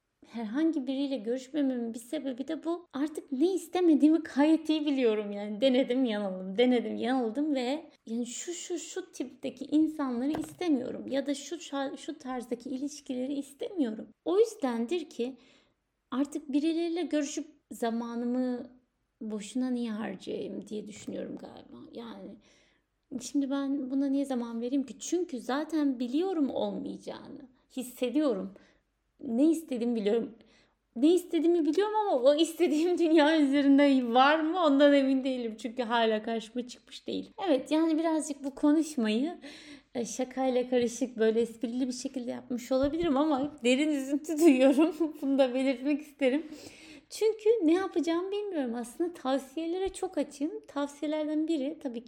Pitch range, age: 250-310 Hz, 30-49